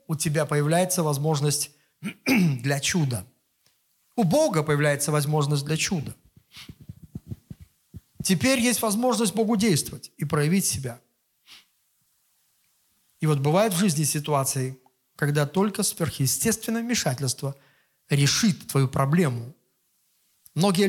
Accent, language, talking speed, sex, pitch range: native, Russian, 100 wpm, male, 145-205 Hz